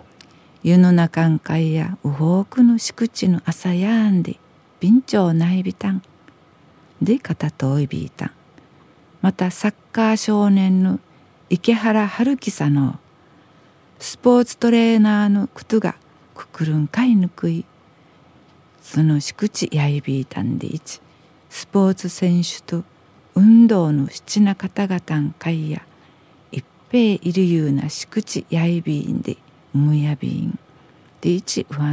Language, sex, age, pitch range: Japanese, female, 50-69, 155-200 Hz